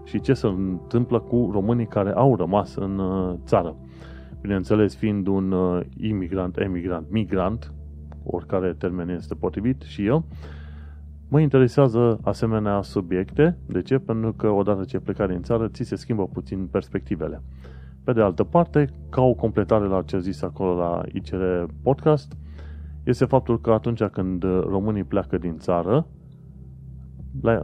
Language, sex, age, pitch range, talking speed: Romanian, male, 30-49, 85-110 Hz, 145 wpm